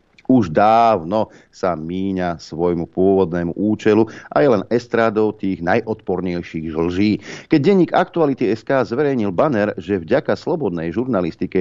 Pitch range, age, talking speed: 90-115 Hz, 50-69, 125 wpm